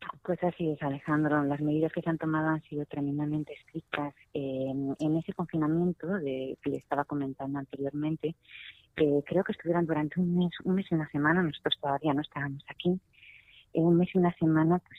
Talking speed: 190 wpm